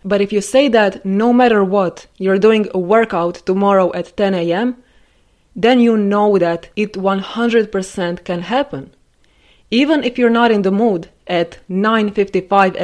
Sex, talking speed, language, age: female, 155 wpm, English, 20-39